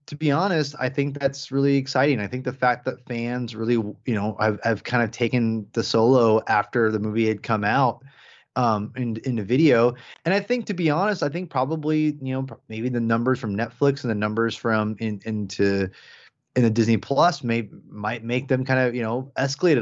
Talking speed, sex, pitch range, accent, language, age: 210 wpm, male, 110-145 Hz, American, English, 20-39